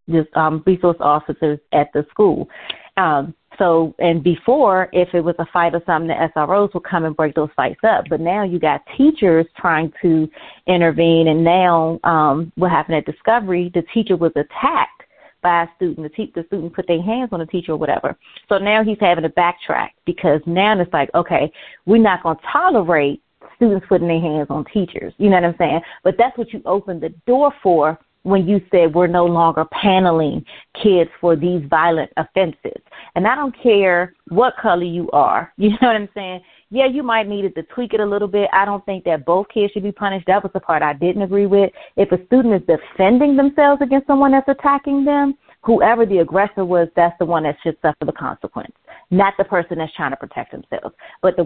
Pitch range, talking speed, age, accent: 165-205 Hz, 210 wpm, 30-49, American